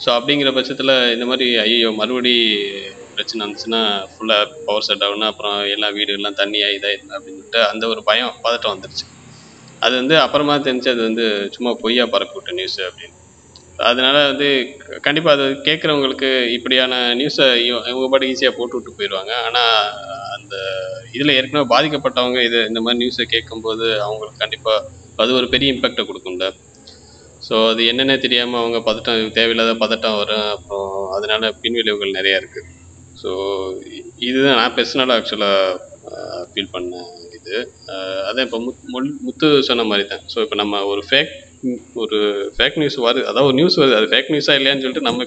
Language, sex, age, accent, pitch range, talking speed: Tamil, male, 20-39, native, 105-130 Hz, 145 wpm